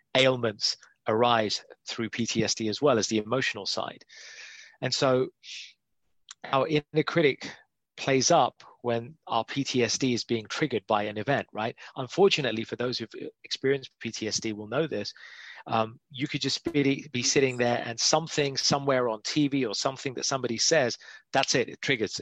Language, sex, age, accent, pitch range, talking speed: English, male, 30-49, British, 110-140 Hz, 155 wpm